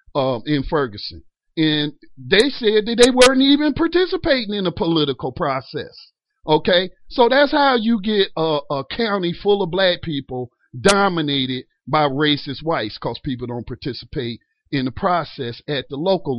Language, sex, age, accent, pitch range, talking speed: English, male, 40-59, American, 135-195 Hz, 155 wpm